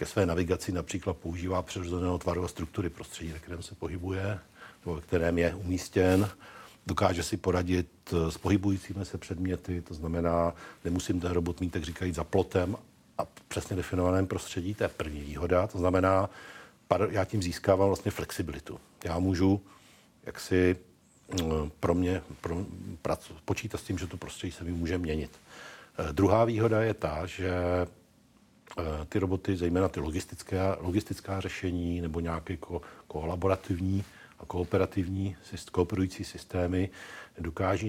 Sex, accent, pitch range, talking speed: male, native, 85-95 Hz, 145 wpm